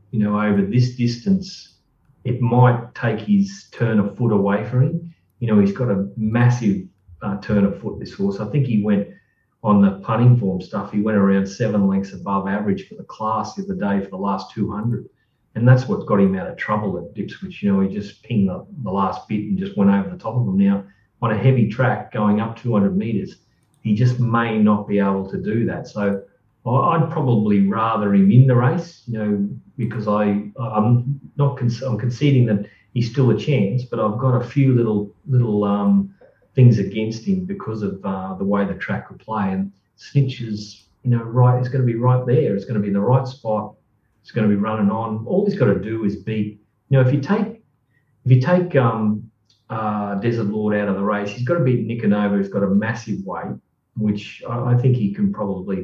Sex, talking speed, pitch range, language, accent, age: male, 220 wpm, 100-125 Hz, English, Australian, 40-59